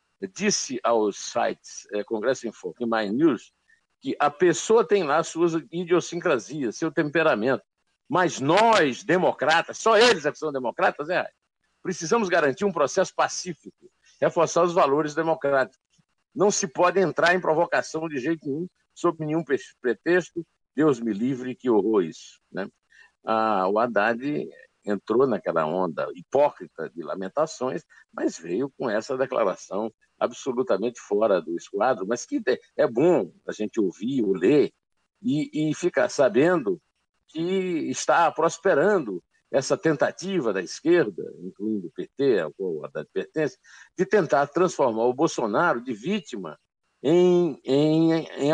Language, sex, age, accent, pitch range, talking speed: Portuguese, male, 60-79, Brazilian, 150-200 Hz, 140 wpm